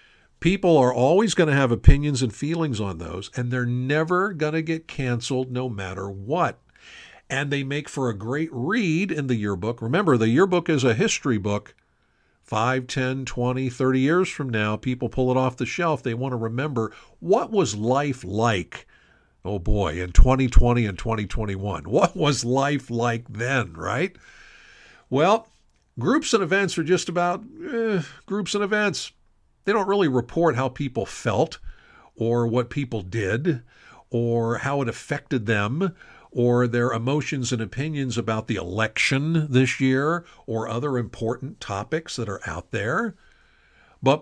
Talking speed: 160 wpm